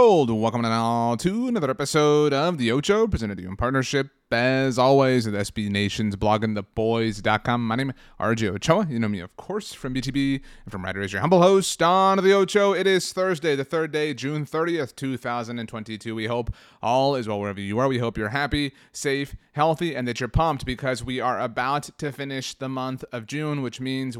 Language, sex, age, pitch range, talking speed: English, male, 30-49, 115-145 Hz, 205 wpm